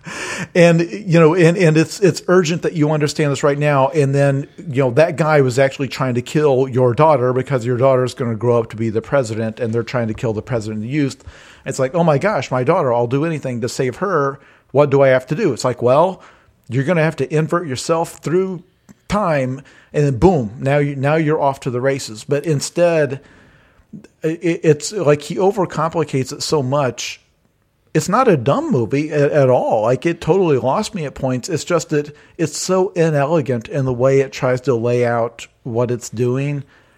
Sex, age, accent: male, 40-59, American